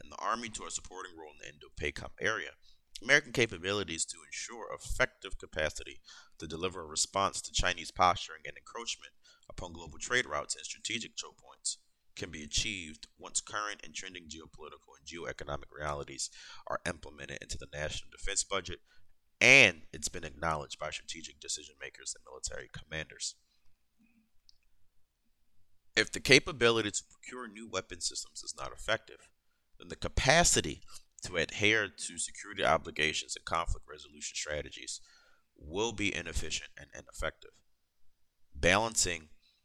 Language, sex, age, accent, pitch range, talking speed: English, male, 30-49, American, 75-100 Hz, 140 wpm